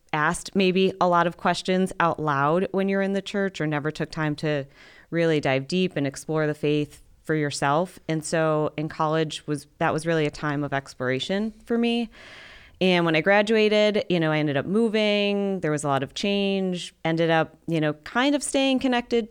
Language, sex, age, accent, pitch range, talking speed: English, female, 30-49, American, 150-190 Hz, 200 wpm